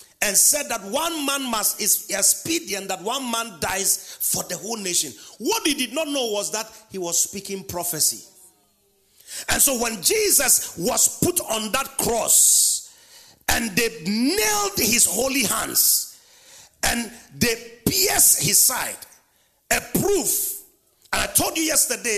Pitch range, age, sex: 180-275 Hz, 40-59, male